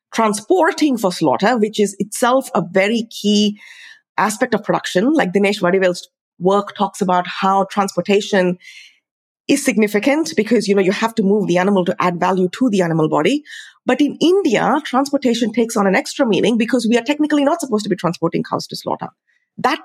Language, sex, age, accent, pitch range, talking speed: English, female, 30-49, Indian, 185-250 Hz, 180 wpm